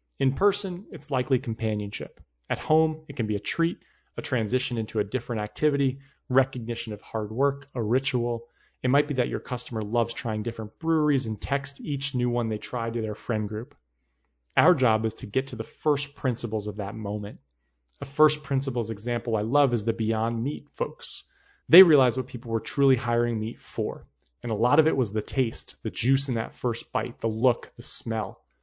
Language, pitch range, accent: English, 110-135 Hz, American